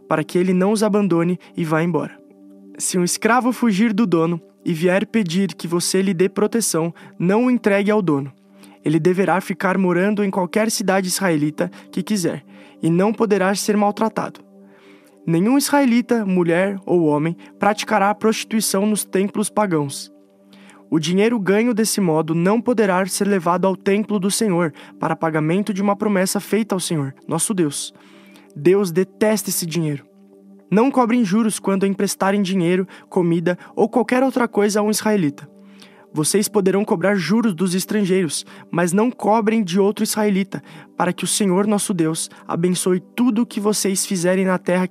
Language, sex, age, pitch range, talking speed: Portuguese, male, 20-39, 165-210 Hz, 160 wpm